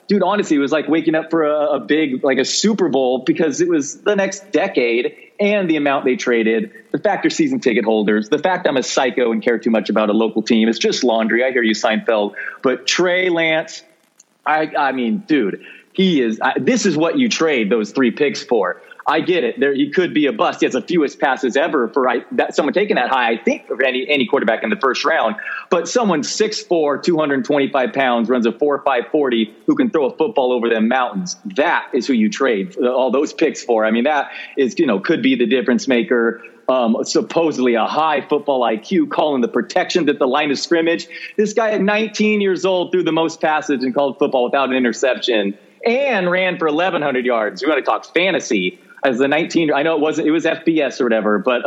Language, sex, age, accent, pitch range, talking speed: English, male, 30-49, American, 130-195 Hz, 225 wpm